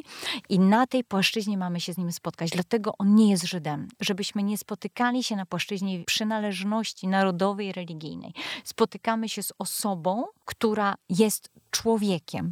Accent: native